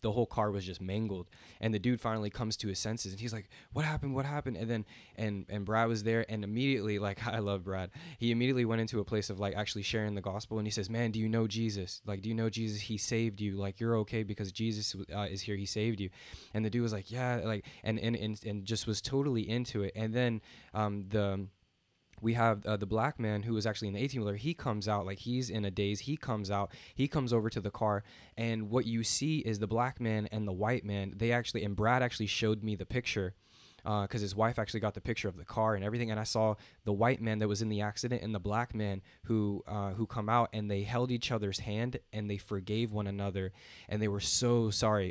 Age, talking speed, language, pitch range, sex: 20-39, 255 wpm, English, 100-115 Hz, male